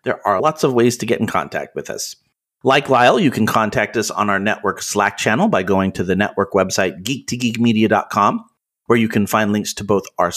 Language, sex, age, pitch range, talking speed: English, male, 30-49, 110-145 Hz, 215 wpm